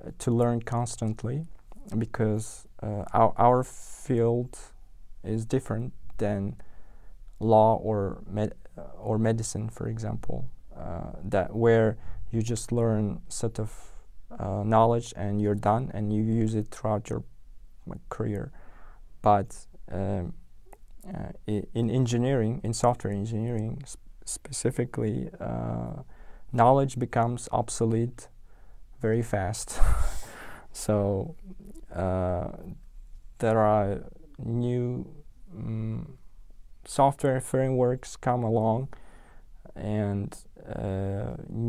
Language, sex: Russian, male